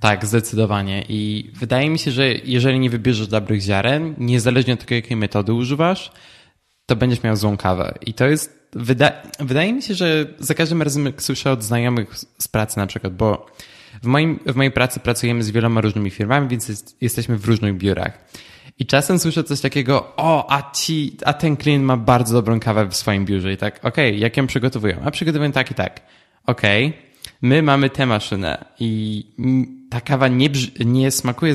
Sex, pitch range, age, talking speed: male, 105-135 Hz, 20-39, 195 wpm